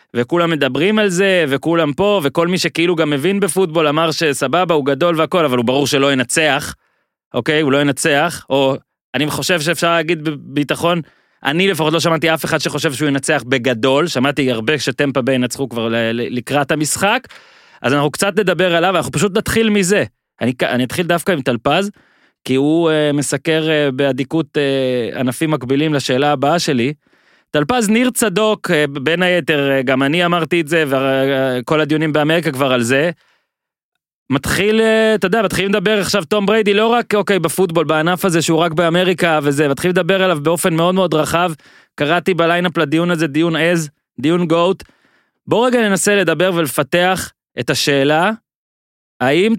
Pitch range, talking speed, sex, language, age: 140-180 Hz, 165 wpm, male, Hebrew, 30-49